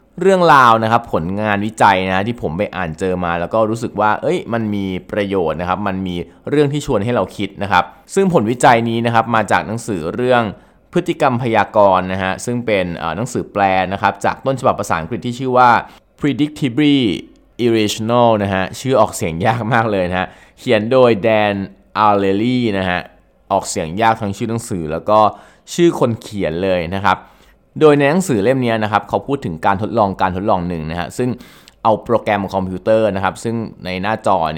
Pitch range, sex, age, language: 95-120 Hz, male, 20-39, Thai